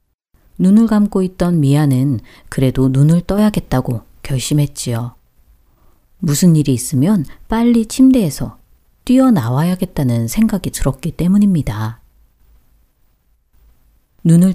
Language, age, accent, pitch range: Korean, 40-59, native, 130-190 Hz